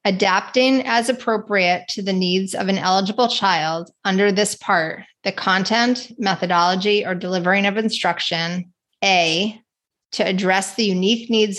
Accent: American